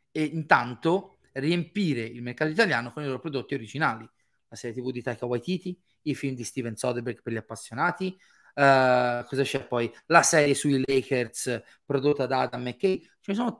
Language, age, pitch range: Italian, 30-49, 125-160 Hz